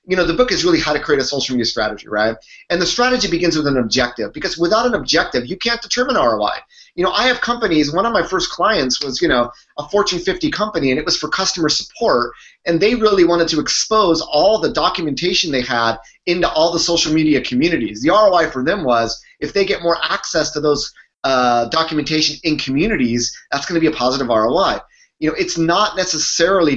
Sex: male